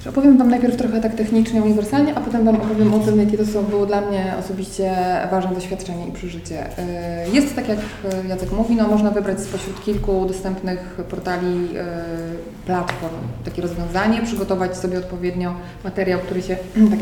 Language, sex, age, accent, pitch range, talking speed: Polish, female, 20-39, native, 180-215 Hz, 160 wpm